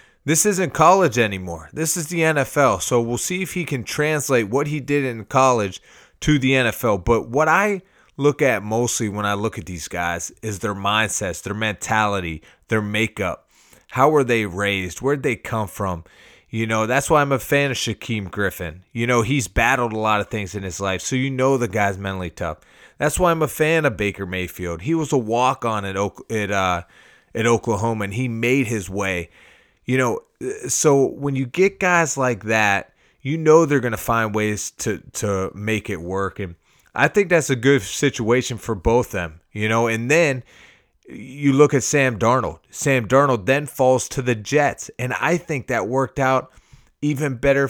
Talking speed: 195 wpm